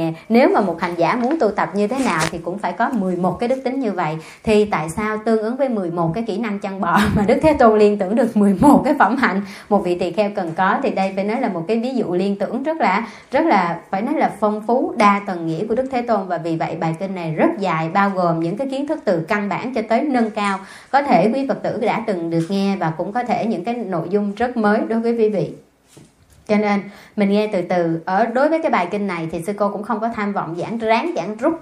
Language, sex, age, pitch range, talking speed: Vietnamese, male, 30-49, 180-230 Hz, 280 wpm